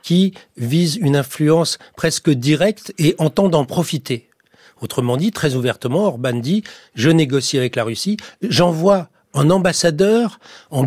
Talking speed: 145 wpm